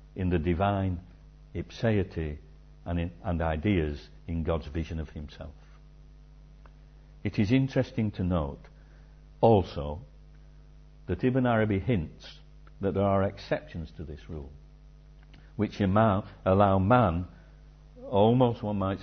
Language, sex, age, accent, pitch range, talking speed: English, male, 60-79, British, 75-110 Hz, 105 wpm